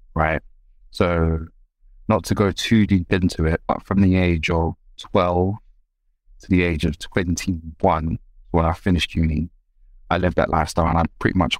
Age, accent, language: 20-39, British, English